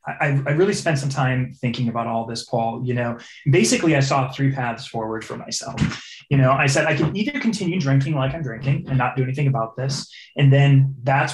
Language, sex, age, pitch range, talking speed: English, male, 20-39, 125-145 Hz, 220 wpm